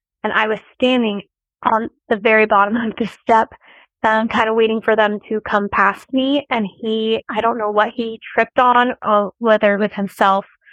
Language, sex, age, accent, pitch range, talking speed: English, female, 20-39, American, 205-245 Hz, 190 wpm